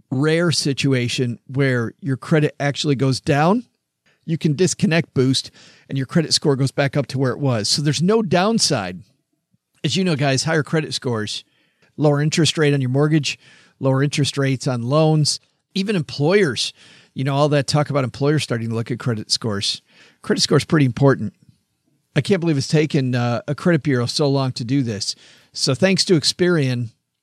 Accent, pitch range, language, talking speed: American, 135-165 Hz, English, 185 wpm